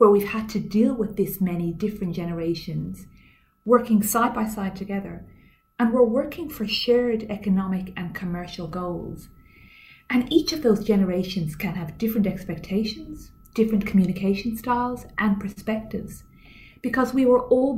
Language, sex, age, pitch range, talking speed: English, female, 30-49, 175-220 Hz, 140 wpm